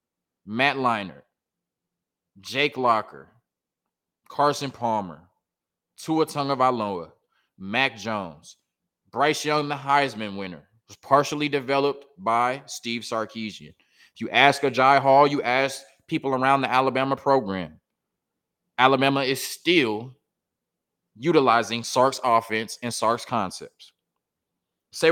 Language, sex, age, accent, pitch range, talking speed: English, male, 20-39, American, 115-145 Hz, 105 wpm